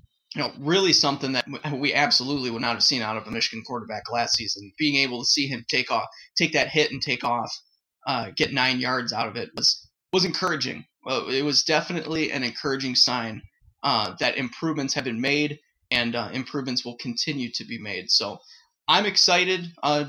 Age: 20-39